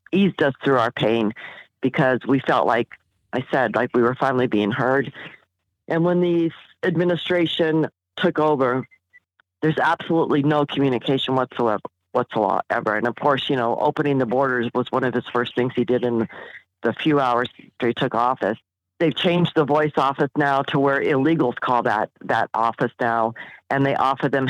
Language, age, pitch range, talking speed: English, 50-69, 125-155 Hz, 175 wpm